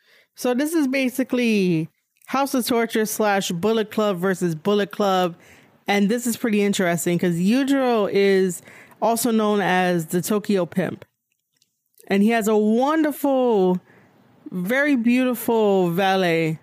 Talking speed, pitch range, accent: 125 wpm, 190-235 Hz, American